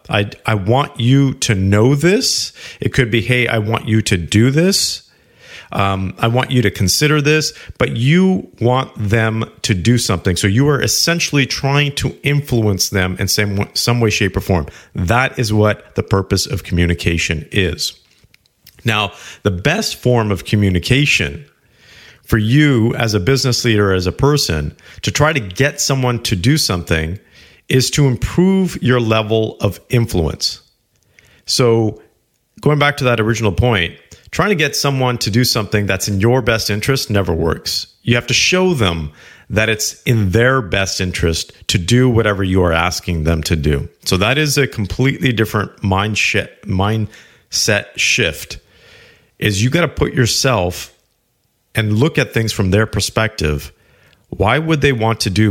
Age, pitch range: 40-59, 95-130 Hz